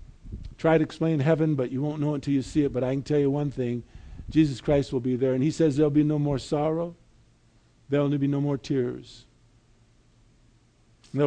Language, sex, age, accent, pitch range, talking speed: English, male, 50-69, American, 115-155 Hz, 220 wpm